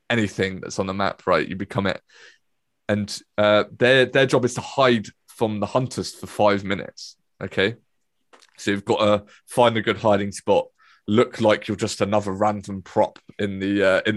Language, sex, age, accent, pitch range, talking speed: English, male, 20-39, British, 100-115 Hz, 185 wpm